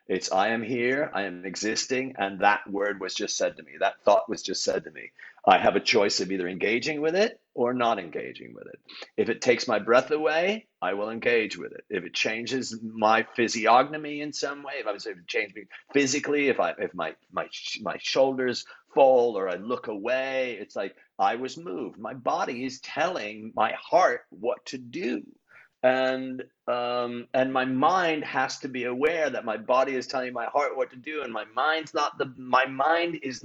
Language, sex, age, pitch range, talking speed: English, male, 50-69, 115-145 Hz, 205 wpm